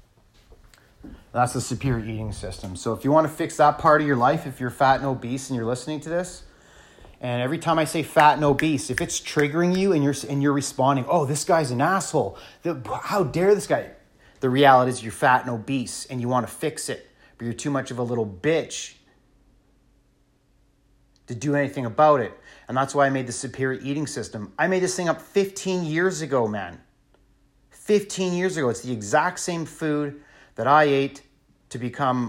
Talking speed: 200 wpm